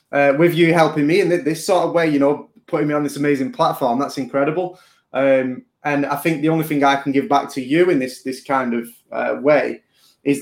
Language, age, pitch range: English, 20-39, 135-155 Hz